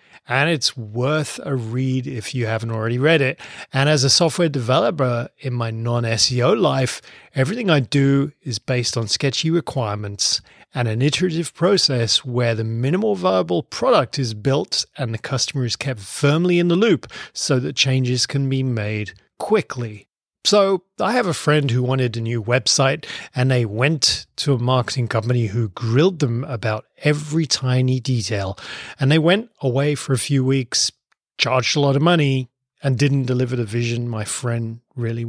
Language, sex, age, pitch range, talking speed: English, male, 30-49, 120-145 Hz, 170 wpm